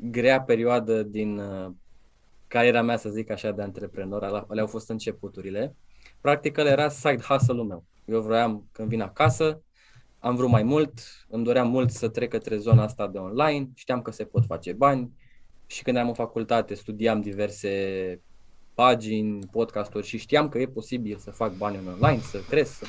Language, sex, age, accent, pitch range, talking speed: Romanian, male, 20-39, native, 105-140 Hz, 175 wpm